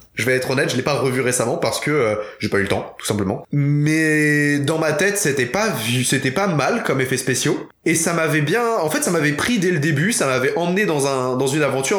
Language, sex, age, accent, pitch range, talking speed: French, male, 20-39, French, 120-155 Hz, 260 wpm